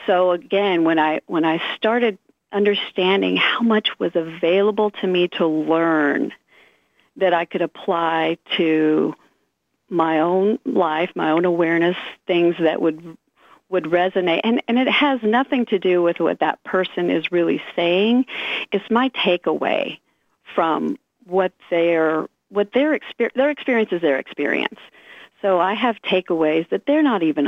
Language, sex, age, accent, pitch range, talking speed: English, female, 50-69, American, 170-210 Hz, 150 wpm